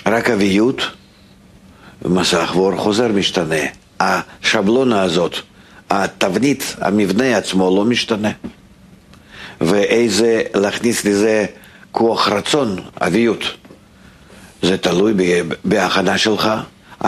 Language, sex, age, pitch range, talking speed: Hebrew, male, 50-69, 95-120 Hz, 80 wpm